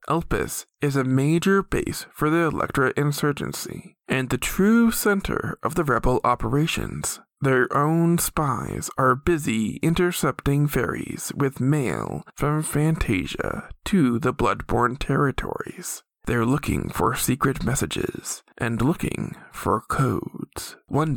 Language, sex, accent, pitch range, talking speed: English, male, American, 130-180 Hz, 120 wpm